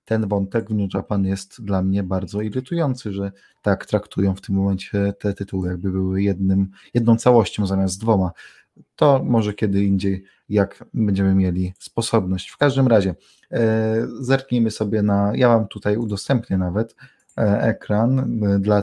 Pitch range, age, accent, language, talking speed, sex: 100-115 Hz, 20-39, native, Polish, 155 wpm, male